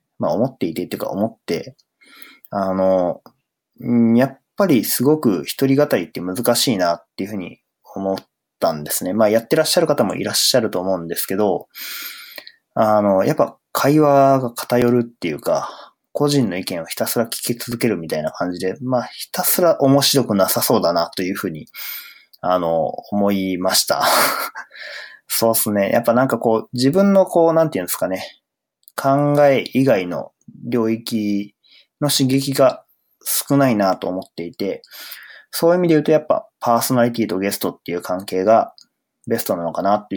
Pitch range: 100-135 Hz